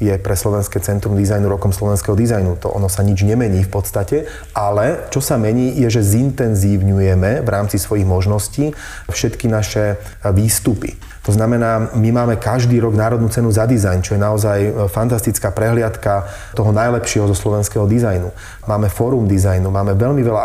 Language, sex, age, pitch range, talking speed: Slovak, male, 30-49, 100-120 Hz, 160 wpm